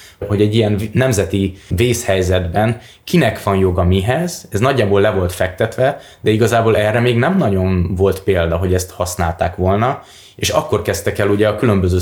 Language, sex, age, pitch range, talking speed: Hungarian, male, 20-39, 95-105 Hz, 165 wpm